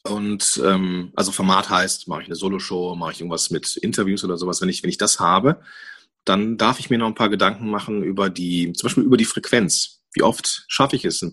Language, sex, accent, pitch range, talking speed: German, male, German, 95-135 Hz, 235 wpm